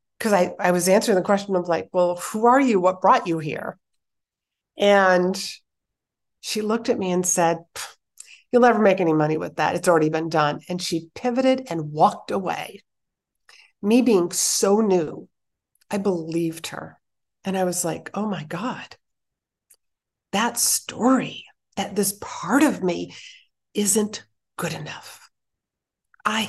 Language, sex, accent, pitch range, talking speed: English, female, American, 175-210 Hz, 150 wpm